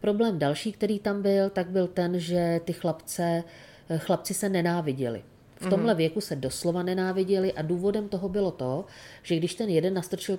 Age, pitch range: 40-59, 150-185 Hz